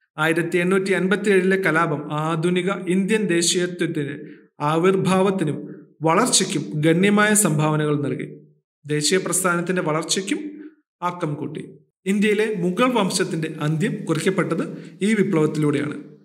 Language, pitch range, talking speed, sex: Malayalam, 160-195 Hz, 85 wpm, male